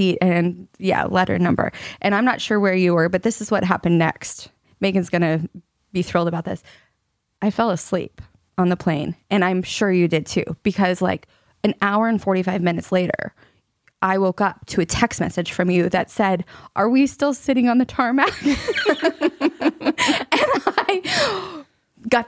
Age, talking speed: 20-39, 170 wpm